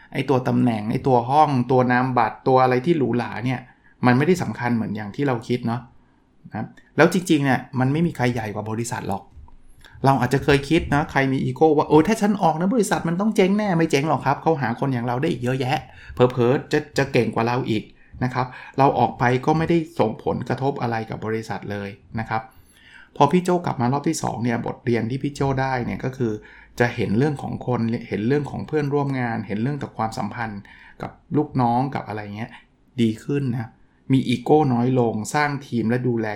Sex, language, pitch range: male, Thai, 115-145 Hz